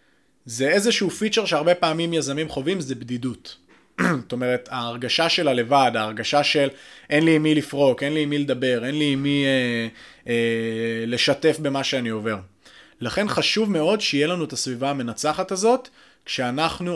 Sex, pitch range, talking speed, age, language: male, 130-170 Hz, 155 wpm, 20-39, Hebrew